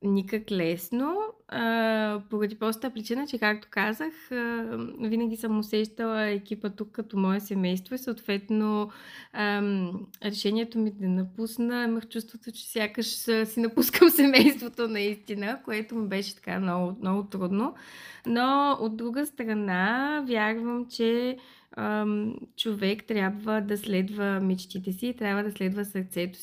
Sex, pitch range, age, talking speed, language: female, 190-230 Hz, 20-39, 130 wpm, Bulgarian